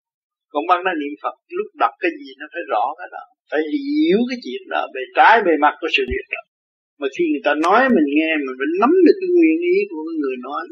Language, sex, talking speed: Vietnamese, male, 240 wpm